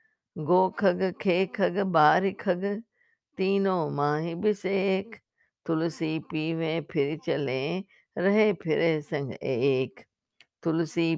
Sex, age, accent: female, 50-69, native